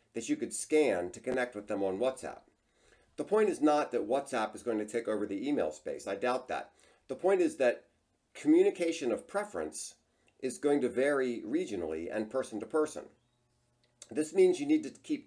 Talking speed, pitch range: 195 wpm, 110-150 Hz